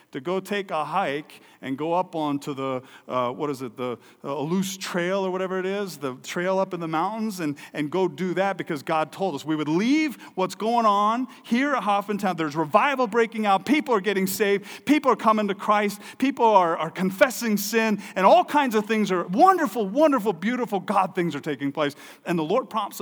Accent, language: American, English